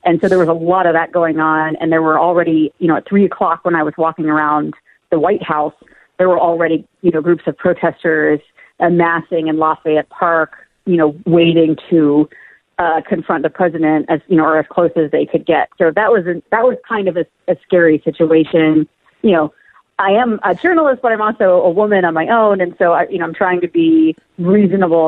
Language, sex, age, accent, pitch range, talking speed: English, female, 40-59, American, 160-195 Hz, 220 wpm